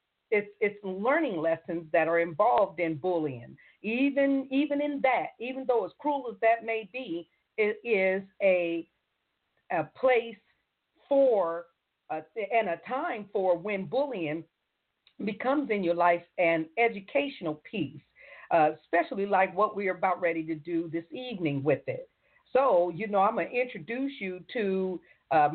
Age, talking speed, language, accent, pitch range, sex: 50-69, 155 wpm, English, American, 175-245 Hz, female